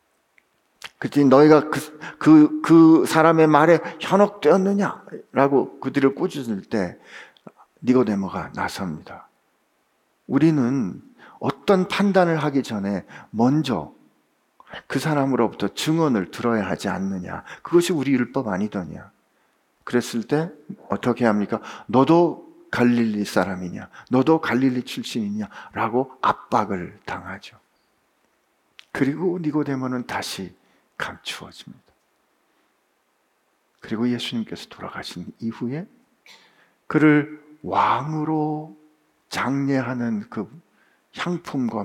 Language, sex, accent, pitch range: Korean, male, native, 125-200 Hz